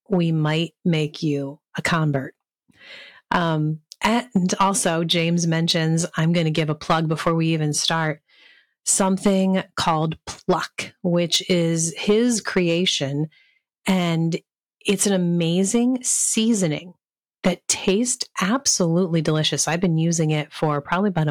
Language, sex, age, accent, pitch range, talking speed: English, female, 30-49, American, 155-195 Hz, 125 wpm